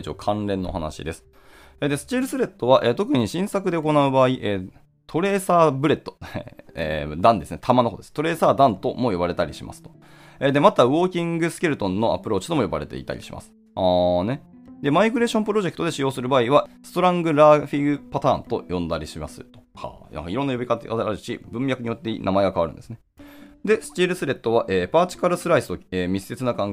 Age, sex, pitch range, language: 20-39, male, 95-160 Hz, Japanese